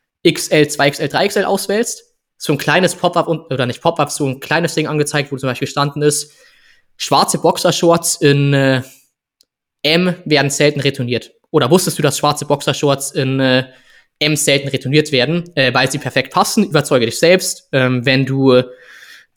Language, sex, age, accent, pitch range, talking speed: German, male, 20-39, German, 130-160 Hz, 165 wpm